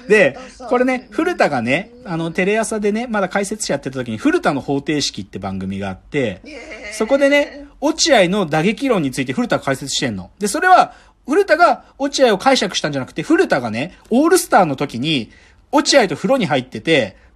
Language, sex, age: Japanese, male, 40-59